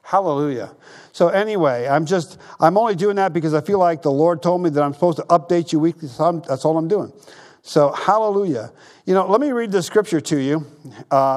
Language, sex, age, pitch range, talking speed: English, male, 50-69, 150-205 Hz, 215 wpm